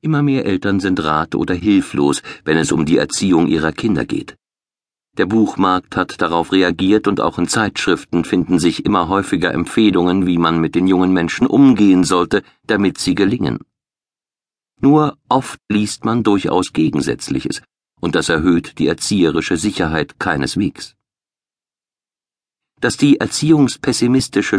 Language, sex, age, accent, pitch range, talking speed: German, male, 50-69, German, 90-115 Hz, 135 wpm